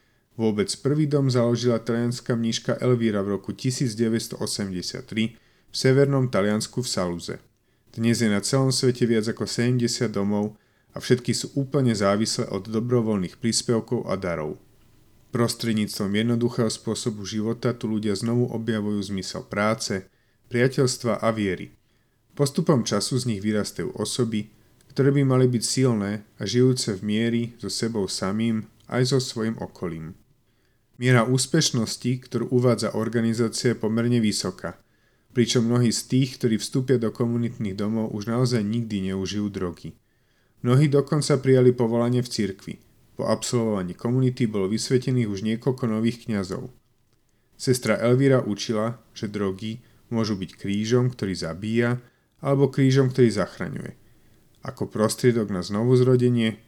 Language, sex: Slovak, male